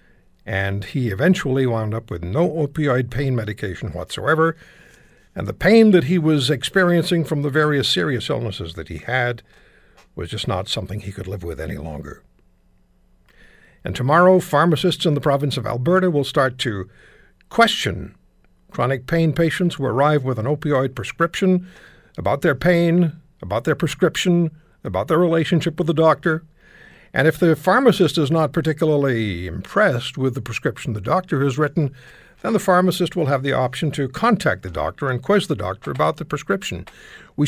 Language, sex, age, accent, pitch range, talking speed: English, male, 60-79, American, 120-170 Hz, 165 wpm